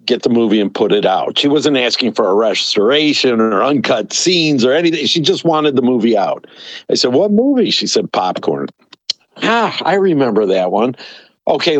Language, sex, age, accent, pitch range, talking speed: English, male, 50-69, American, 130-190 Hz, 190 wpm